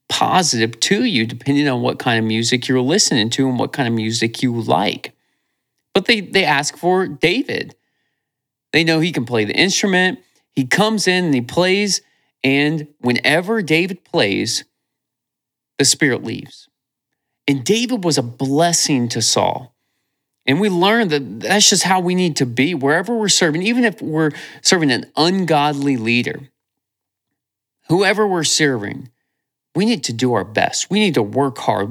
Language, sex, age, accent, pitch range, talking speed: English, male, 30-49, American, 125-175 Hz, 165 wpm